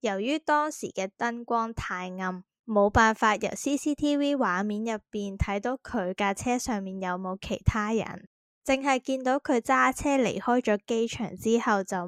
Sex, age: female, 10-29